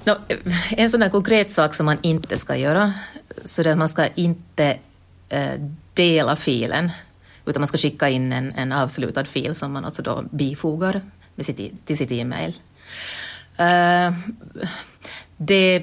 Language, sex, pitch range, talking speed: English, female, 140-180 Hz, 150 wpm